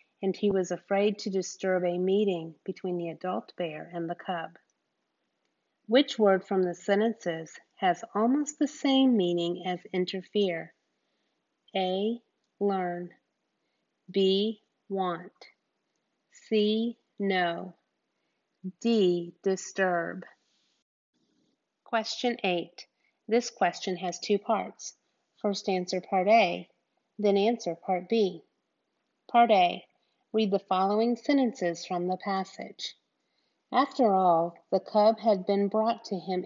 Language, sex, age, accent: English, female, 30-49, American